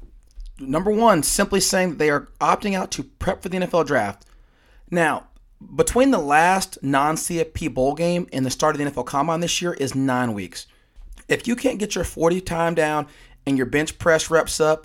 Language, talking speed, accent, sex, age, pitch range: English, 195 wpm, American, male, 30-49, 130-170 Hz